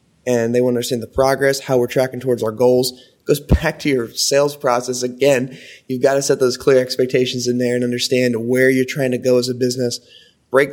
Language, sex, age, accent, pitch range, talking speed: English, male, 20-39, American, 115-130 Hz, 230 wpm